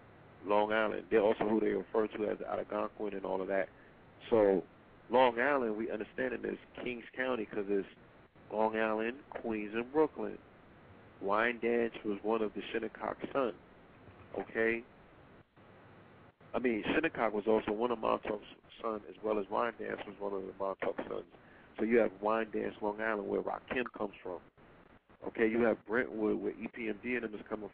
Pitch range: 105-115 Hz